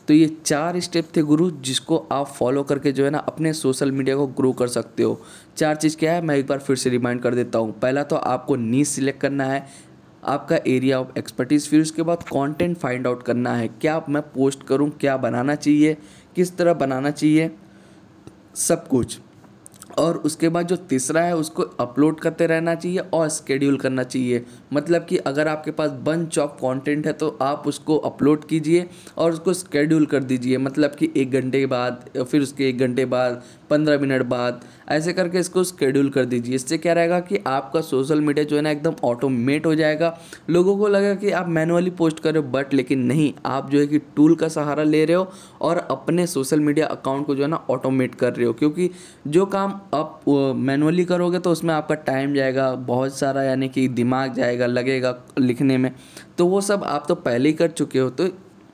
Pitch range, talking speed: 130-165 Hz, 205 wpm